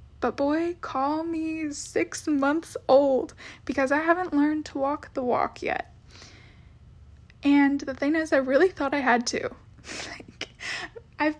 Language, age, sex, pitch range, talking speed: English, 10-29, female, 250-305 Hz, 140 wpm